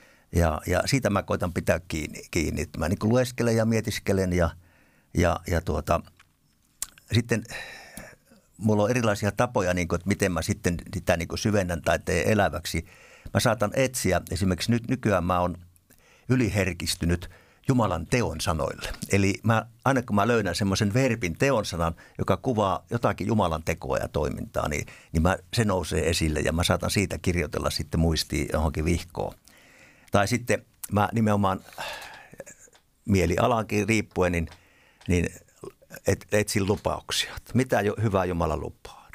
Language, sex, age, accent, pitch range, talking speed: Finnish, male, 60-79, native, 85-110 Hz, 140 wpm